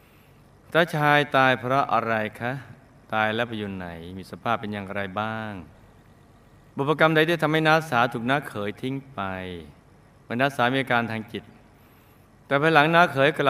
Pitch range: 105-145 Hz